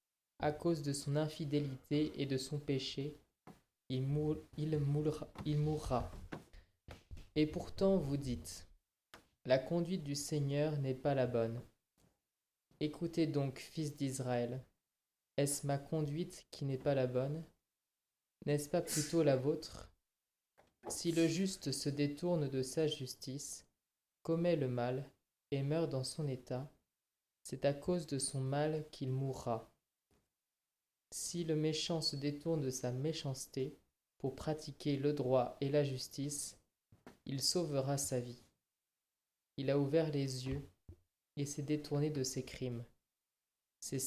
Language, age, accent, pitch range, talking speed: French, 20-39, French, 130-155 Hz, 130 wpm